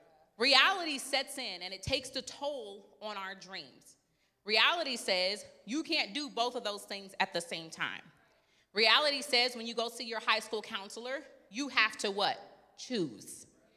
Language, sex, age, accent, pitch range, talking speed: English, female, 30-49, American, 220-310 Hz, 170 wpm